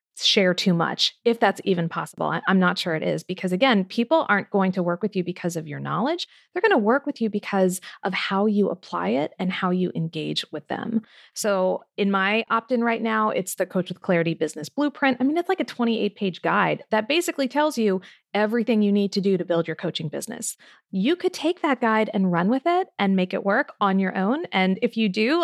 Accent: American